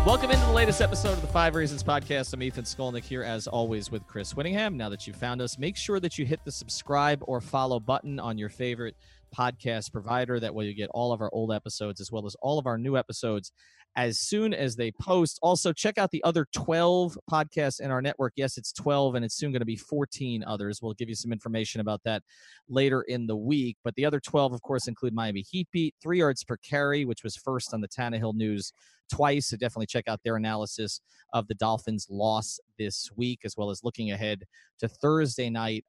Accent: American